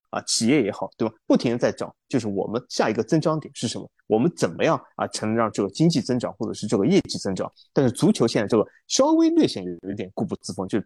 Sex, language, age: male, Chinese, 20-39